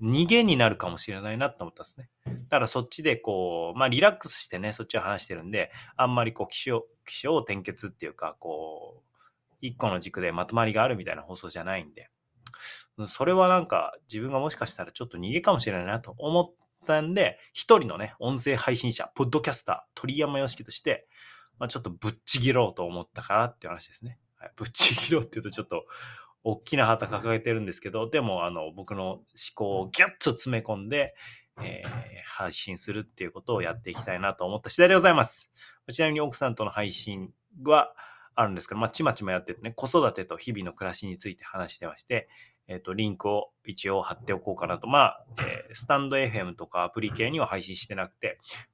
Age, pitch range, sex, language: 30-49, 100-135 Hz, male, Japanese